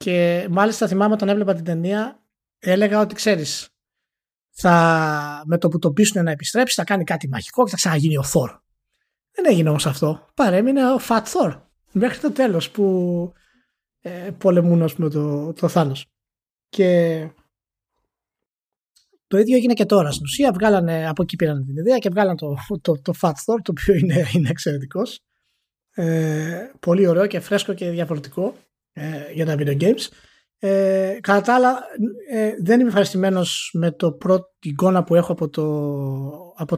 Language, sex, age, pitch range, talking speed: Greek, male, 20-39, 160-205 Hz, 165 wpm